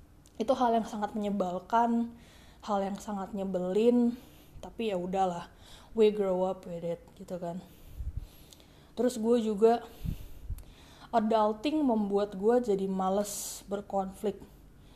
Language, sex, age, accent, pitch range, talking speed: Indonesian, female, 20-39, native, 190-240 Hz, 110 wpm